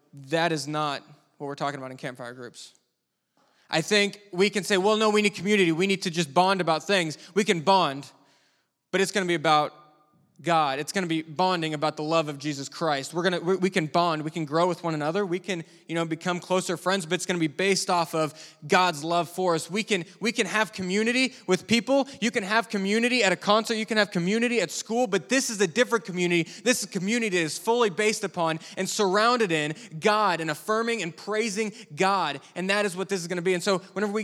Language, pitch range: English, 155-200 Hz